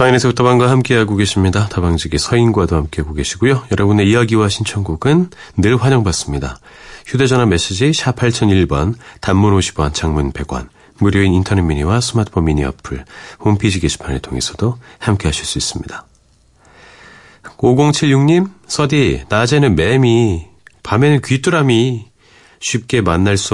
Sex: male